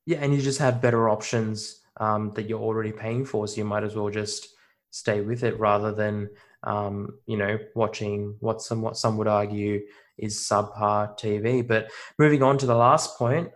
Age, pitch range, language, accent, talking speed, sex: 20-39, 110-120 Hz, English, Australian, 195 wpm, male